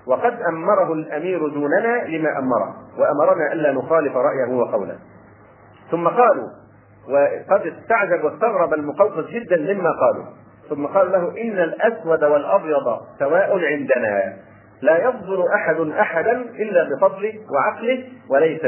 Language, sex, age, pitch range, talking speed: Arabic, male, 40-59, 130-195 Hz, 115 wpm